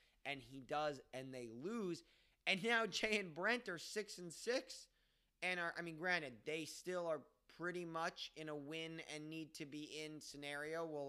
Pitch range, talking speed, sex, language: 145-185 Hz, 190 wpm, male, English